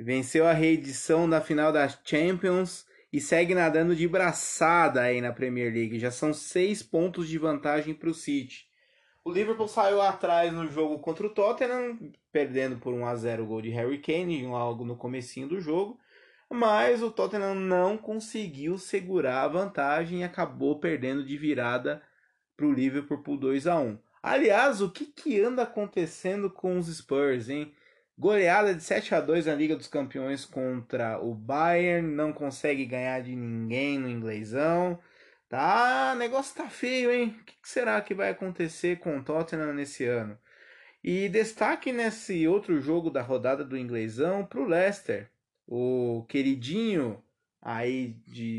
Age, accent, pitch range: 20-39, Brazilian, 130-195 Hz